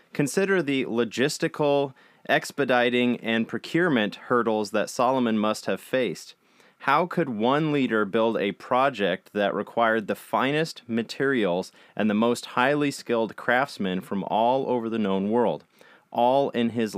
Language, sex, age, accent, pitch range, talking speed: English, male, 30-49, American, 110-140 Hz, 140 wpm